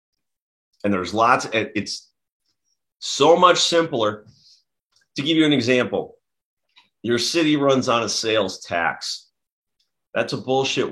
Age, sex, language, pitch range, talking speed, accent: 30-49, male, English, 105-140 Hz, 120 wpm, American